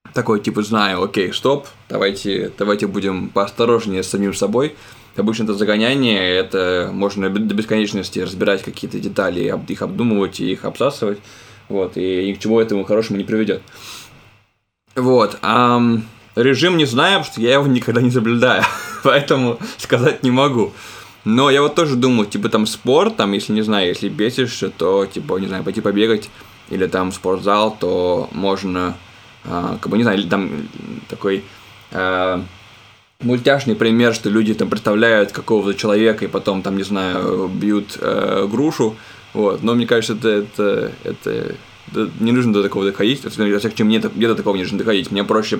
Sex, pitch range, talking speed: male, 100-120 Hz, 165 wpm